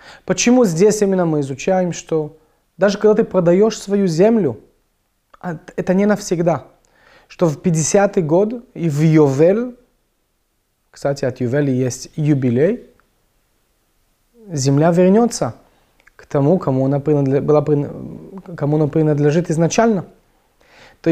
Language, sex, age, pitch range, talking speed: Russian, male, 30-49, 140-185 Hz, 100 wpm